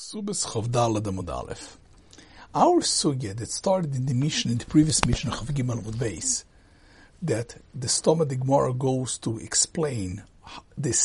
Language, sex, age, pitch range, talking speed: English, male, 60-79, 115-175 Hz, 125 wpm